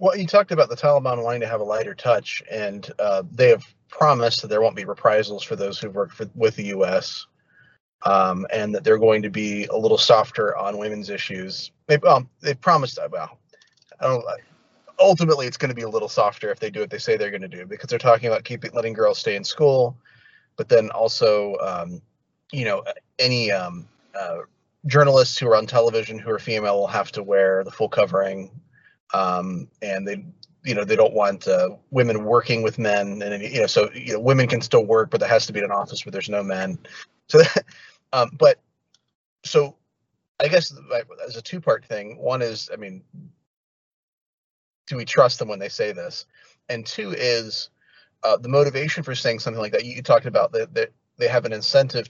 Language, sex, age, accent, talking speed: English, male, 30-49, American, 210 wpm